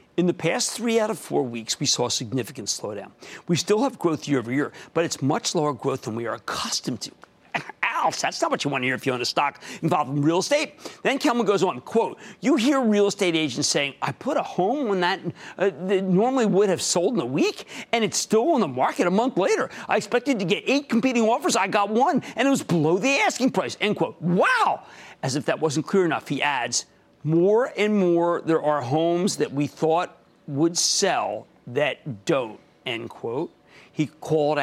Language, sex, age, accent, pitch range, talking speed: English, male, 50-69, American, 150-225 Hz, 220 wpm